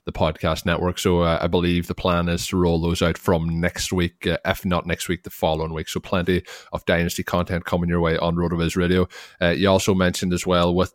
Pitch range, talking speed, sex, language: 85-90 Hz, 235 wpm, male, English